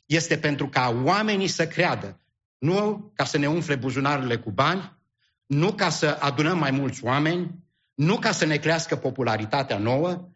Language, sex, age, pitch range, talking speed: English, male, 50-69, 130-175 Hz, 160 wpm